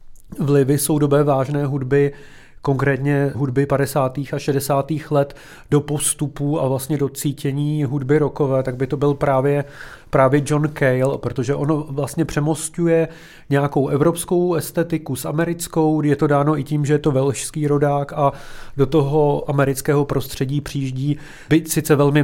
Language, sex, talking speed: Czech, male, 150 wpm